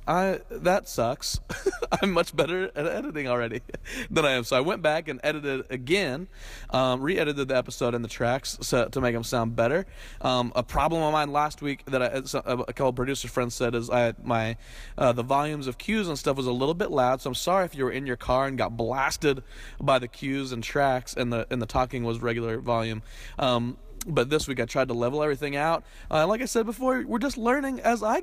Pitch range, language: 125-170 Hz, English